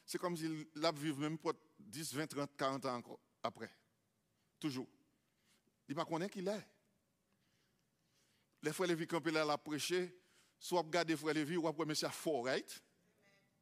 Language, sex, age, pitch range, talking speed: English, male, 50-69, 180-275 Hz, 170 wpm